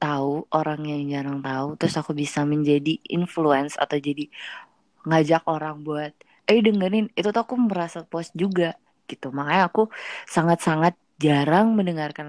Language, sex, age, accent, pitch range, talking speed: Indonesian, female, 20-39, native, 150-180 Hz, 140 wpm